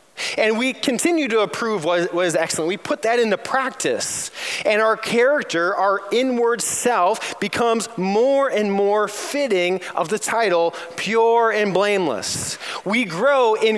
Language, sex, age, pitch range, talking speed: English, male, 20-39, 175-245 Hz, 145 wpm